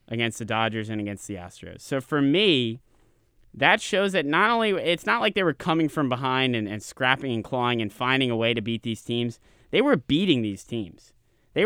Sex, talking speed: male, 215 wpm